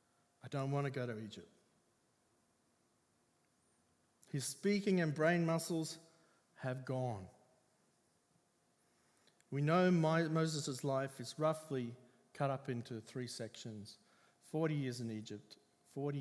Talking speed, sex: 110 wpm, male